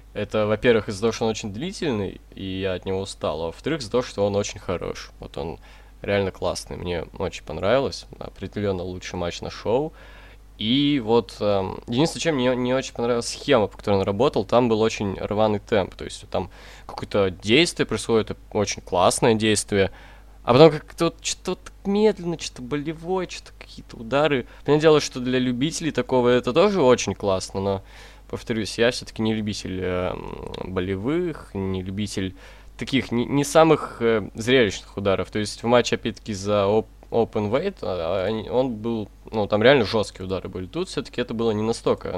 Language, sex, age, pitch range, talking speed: Russian, male, 20-39, 95-125 Hz, 175 wpm